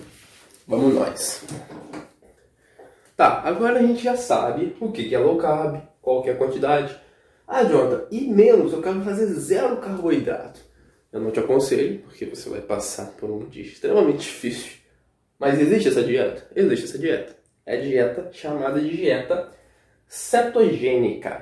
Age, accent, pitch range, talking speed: 20-39, Brazilian, 150-245 Hz, 150 wpm